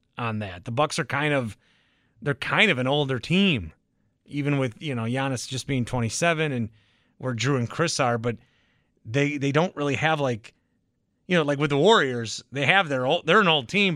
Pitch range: 120-170 Hz